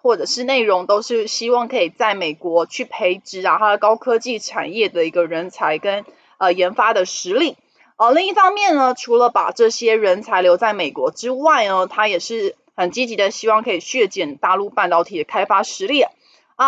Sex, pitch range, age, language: female, 190-270 Hz, 20-39, Chinese